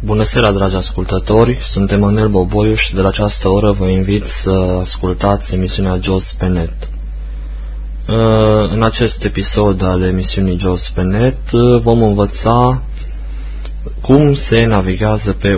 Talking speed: 125 wpm